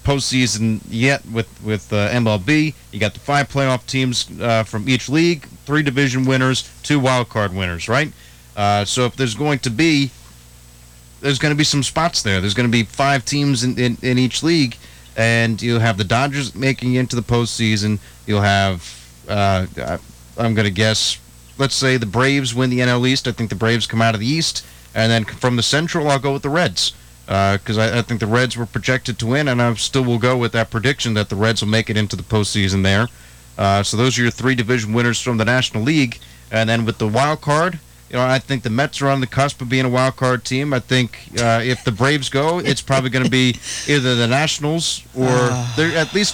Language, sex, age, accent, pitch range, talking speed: English, male, 30-49, American, 110-135 Hz, 225 wpm